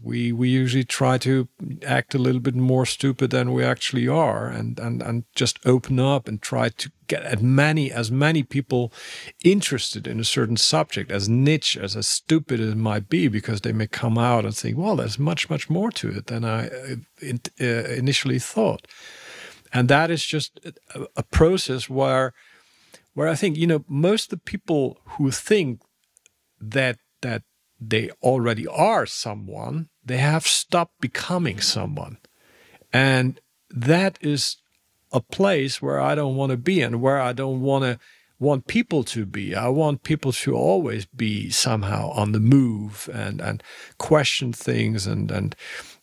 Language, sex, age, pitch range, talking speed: English, male, 50-69, 115-150 Hz, 170 wpm